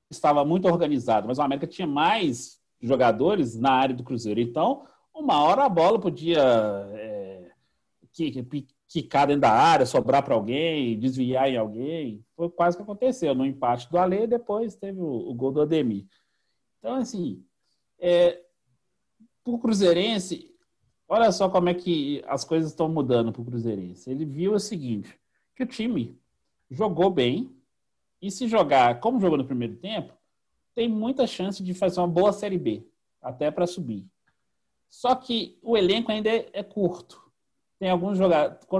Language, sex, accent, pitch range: Portuguese, male, Brazilian, 130-185 Hz